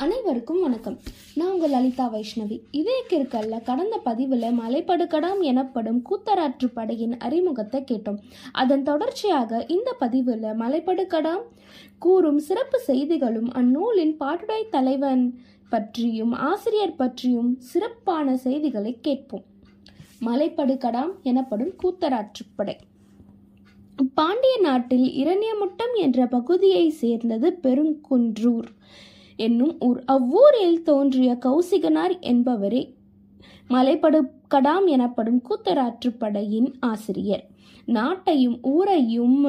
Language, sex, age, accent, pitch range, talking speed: Tamil, female, 20-39, native, 235-325 Hz, 80 wpm